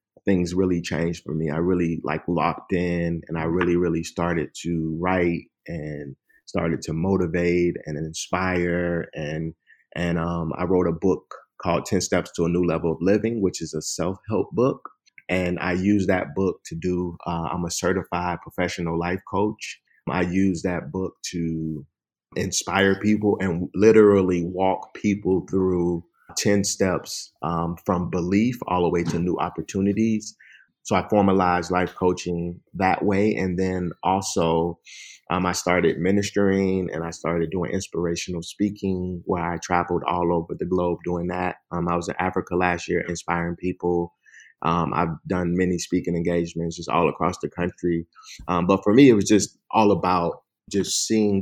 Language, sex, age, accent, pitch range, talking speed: English, male, 30-49, American, 85-95 Hz, 165 wpm